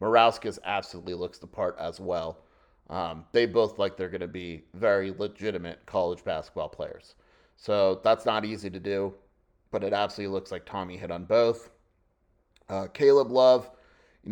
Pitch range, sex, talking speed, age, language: 95-110 Hz, male, 165 wpm, 30-49, English